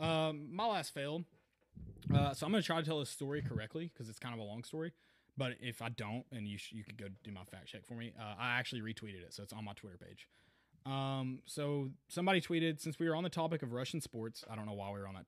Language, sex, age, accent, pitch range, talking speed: English, male, 20-39, American, 110-155 Hz, 270 wpm